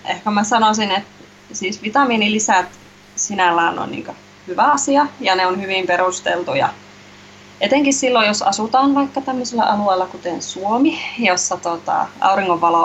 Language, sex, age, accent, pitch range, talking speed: Finnish, female, 20-39, native, 185-215 Hz, 130 wpm